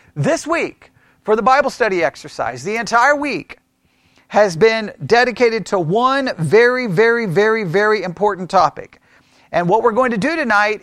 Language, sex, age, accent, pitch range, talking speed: English, male, 40-59, American, 200-255 Hz, 155 wpm